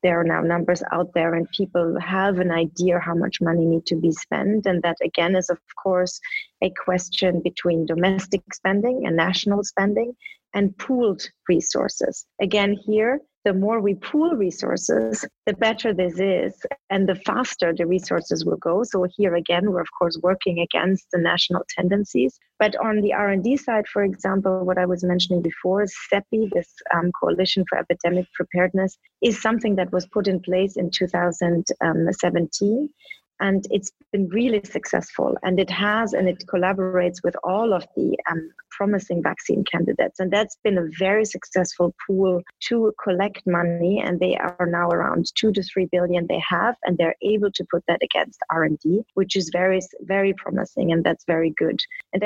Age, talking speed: 30-49, 170 wpm